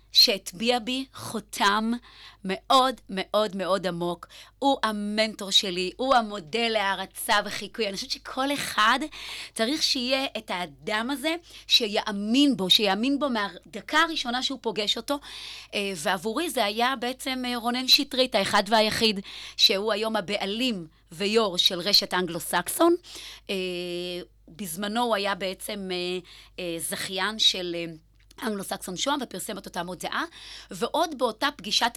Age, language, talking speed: 30-49, Hebrew, 115 wpm